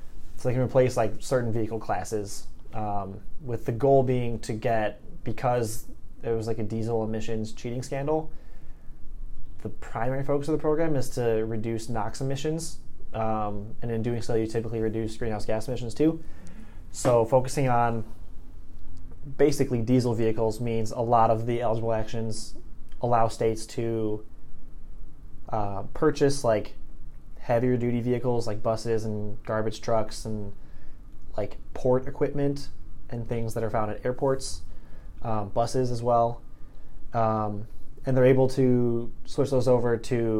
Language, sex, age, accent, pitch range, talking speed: English, male, 20-39, American, 105-125 Hz, 145 wpm